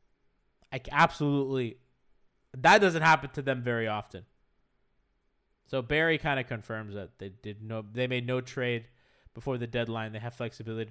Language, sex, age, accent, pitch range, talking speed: English, male, 20-39, American, 105-135 Hz, 155 wpm